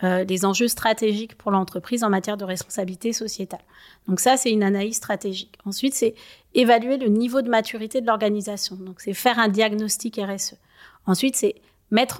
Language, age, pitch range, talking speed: French, 30-49, 200-250 Hz, 170 wpm